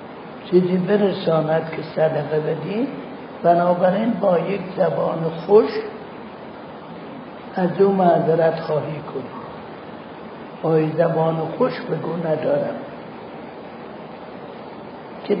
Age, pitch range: 60-79, 170-210 Hz